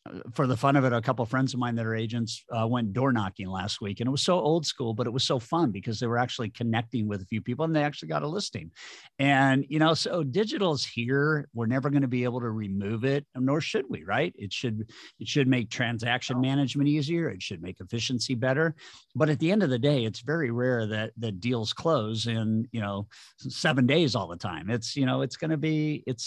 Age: 50-69